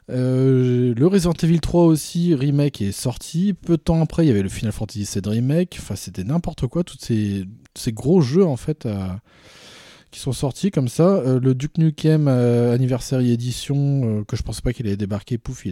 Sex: male